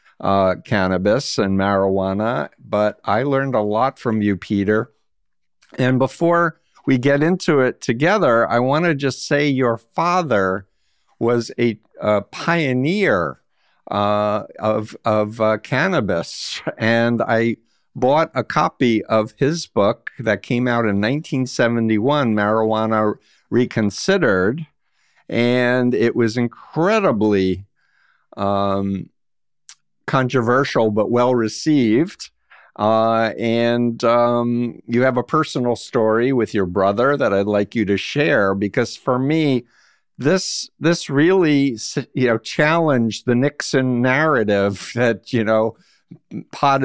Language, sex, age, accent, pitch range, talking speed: English, male, 50-69, American, 105-130 Hz, 120 wpm